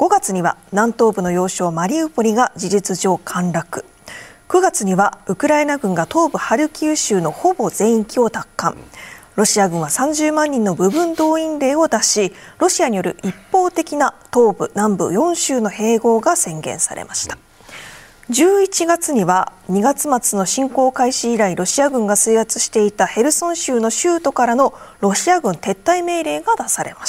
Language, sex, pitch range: Japanese, female, 195-305 Hz